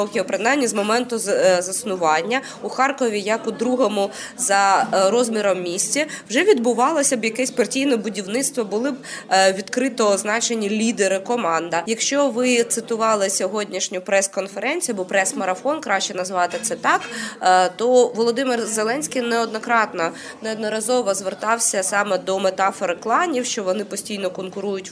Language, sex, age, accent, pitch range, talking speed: Ukrainian, female, 20-39, native, 190-245 Hz, 115 wpm